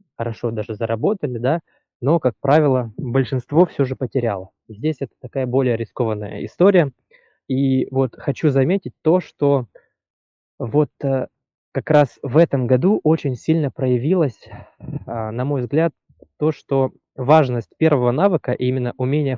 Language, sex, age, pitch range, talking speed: Russian, male, 20-39, 120-150 Hz, 130 wpm